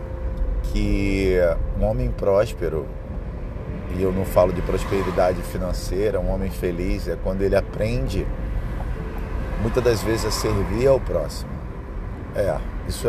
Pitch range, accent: 85-115 Hz, Brazilian